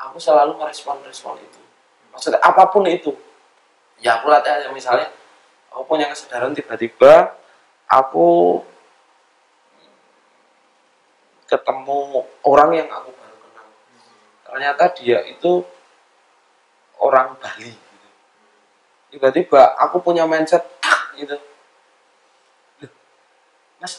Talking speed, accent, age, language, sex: 90 wpm, native, 20-39, Indonesian, male